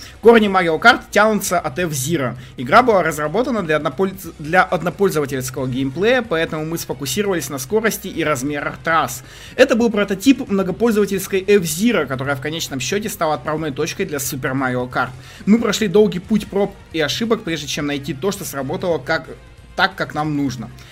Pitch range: 150-210 Hz